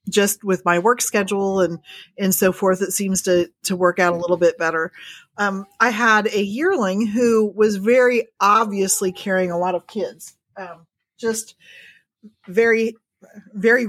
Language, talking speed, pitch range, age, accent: English, 160 wpm, 180-230 Hz, 40-59, American